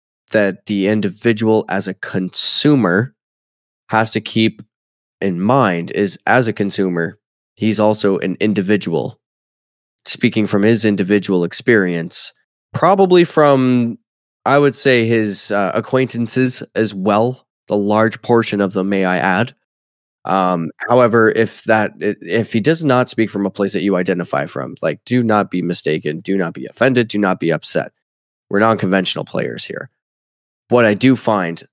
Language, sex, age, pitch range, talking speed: English, male, 20-39, 95-115 Hz, 150 wpm